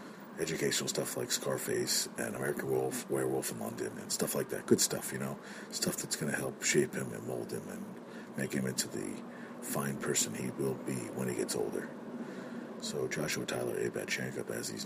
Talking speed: 200 wpm